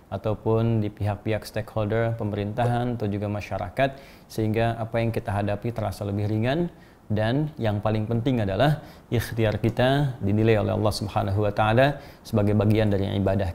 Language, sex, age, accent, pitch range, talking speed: Indonesian, male, 30-49, native, 105-130 Hz, 135 wpm